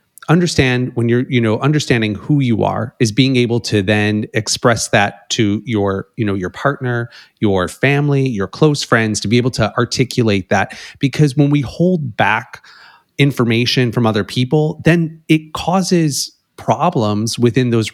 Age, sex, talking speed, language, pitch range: 30-49, male, 160 wpm, English, 110-140 Hz